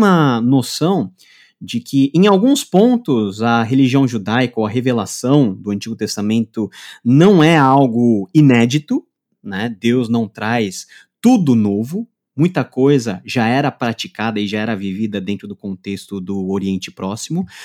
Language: Portuguese